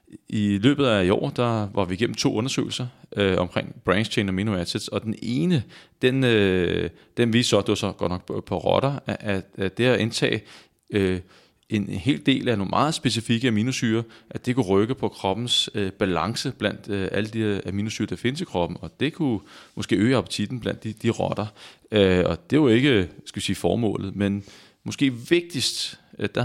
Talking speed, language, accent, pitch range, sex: 195 wpm, Danish, native, 100-120 Hz, male